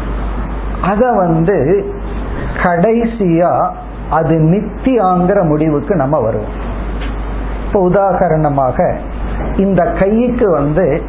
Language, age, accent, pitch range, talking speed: Tamil, 50-69, native, 160-210 Hz, 75 wpm